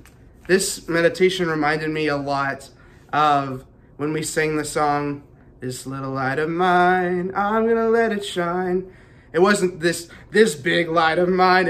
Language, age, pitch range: English, 20-39, 145-180 Hz